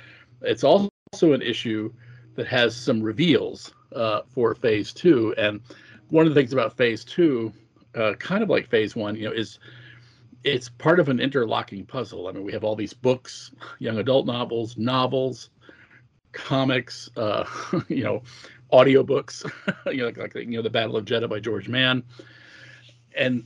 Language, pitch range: English, 115-130 Hz